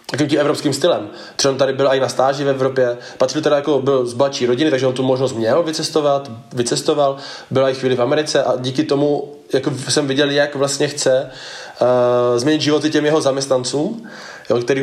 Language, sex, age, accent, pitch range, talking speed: Czech, male, 20-39, native, 125-140 Hz, 190 wpm